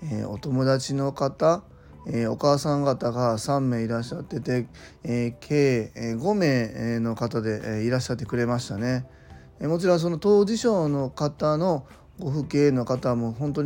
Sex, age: male, 20-39